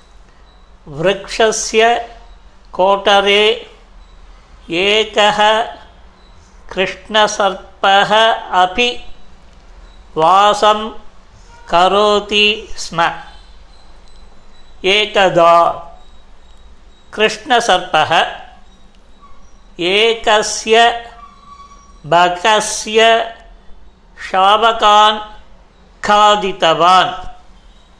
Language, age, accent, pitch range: Tamil, 50-69, native, 175-220 Hz